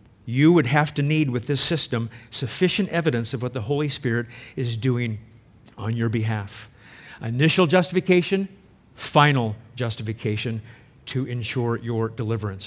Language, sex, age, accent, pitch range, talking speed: English, male, 50-69, American, 120-175 Hz, 135 wpm